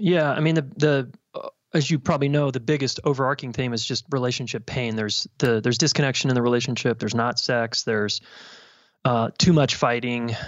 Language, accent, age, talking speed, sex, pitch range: English, American, 30-49, 190 wpm, male, 120-145 Hz